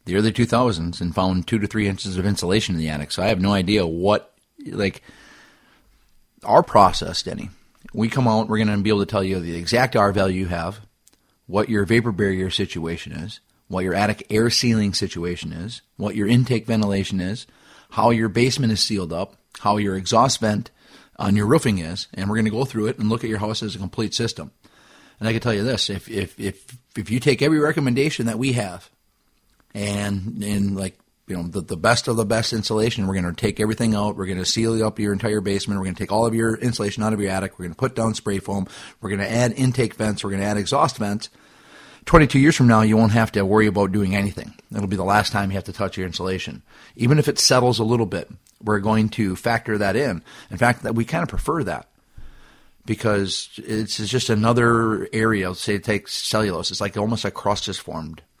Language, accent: English, American